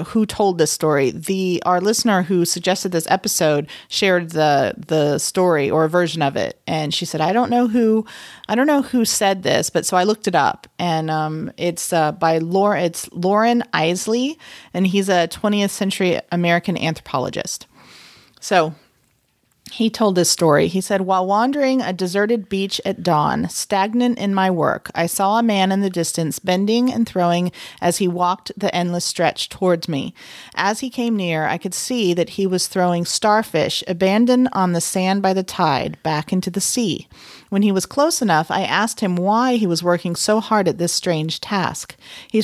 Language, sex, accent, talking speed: English, female, American, 190 wpm